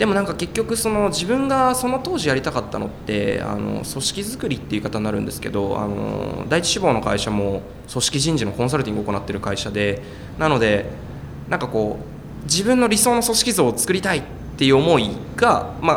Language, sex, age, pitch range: Japanese, male, 20-39, 105-160 Hz